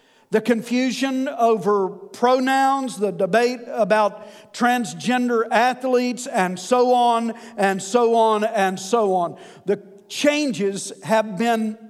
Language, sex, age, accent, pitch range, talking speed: English, male, 50-69, American, 210-255 Hz, 110 wpm